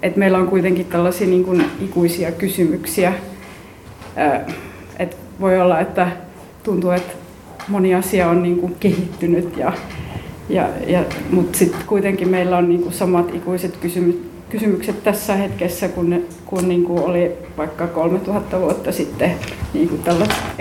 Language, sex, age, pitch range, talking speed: Finnish, female, 30-49, 175-200 Hz, 145 wpm